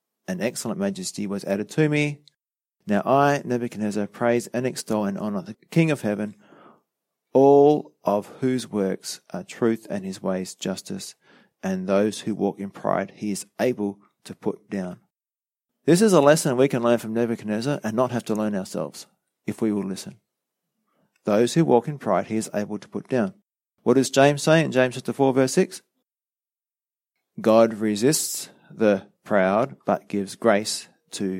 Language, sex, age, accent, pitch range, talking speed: English, male, 30-49, Australian, 105-145 Hz, 170 wpm